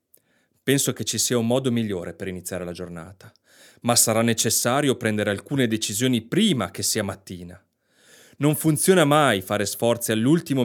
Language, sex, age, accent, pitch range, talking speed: Italian, male, 30-49, native, 105-130 Hz, 150 wpm